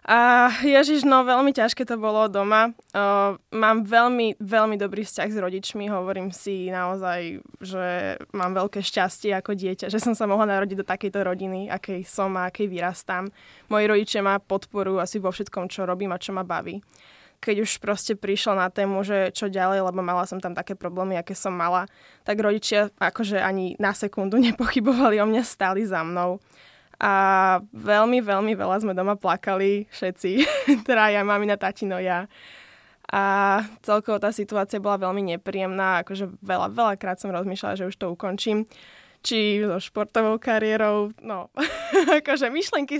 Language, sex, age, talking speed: Slovak, female, 10-29, 165 wpm